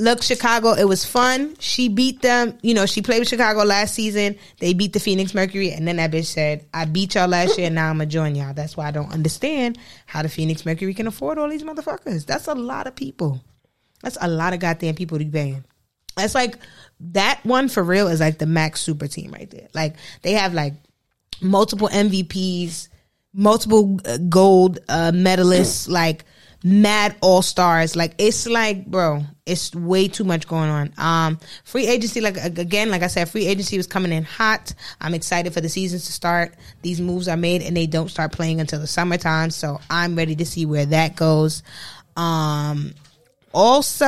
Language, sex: English, female